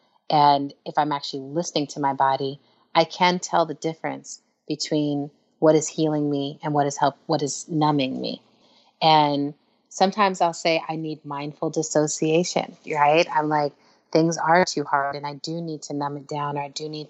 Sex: female